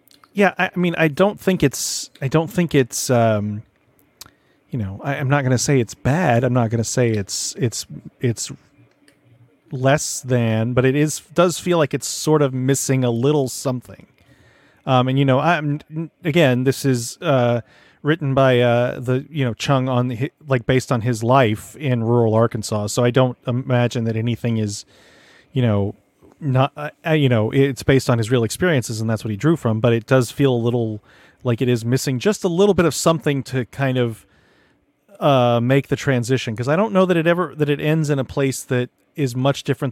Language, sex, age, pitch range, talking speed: English, male, 30-49, 120-145 Hz, 205 wpm